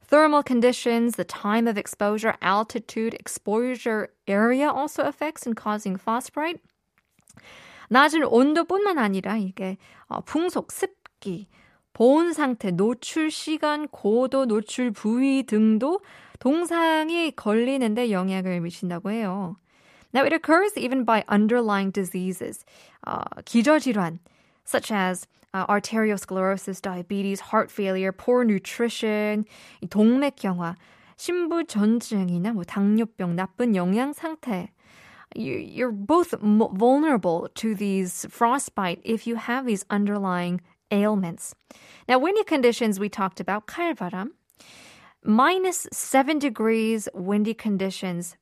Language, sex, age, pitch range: Korean, female, 20-39, 195-270 Hz